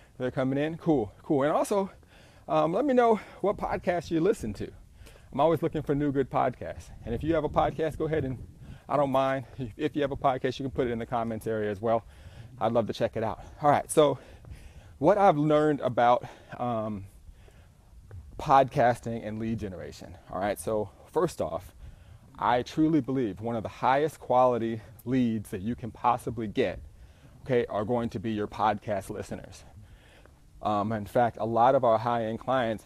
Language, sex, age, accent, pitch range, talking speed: English, male, 30-49, American, 110-135 Hz, 190 wpm